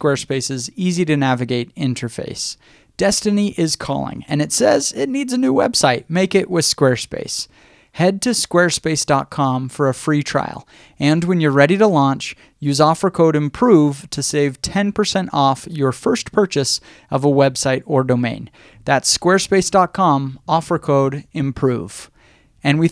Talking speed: 145 wpm